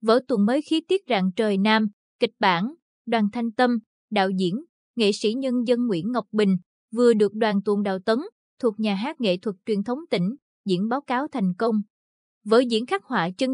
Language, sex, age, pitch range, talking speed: Vietnamese, female, 20-39, 205-255 Hz, 205 wpm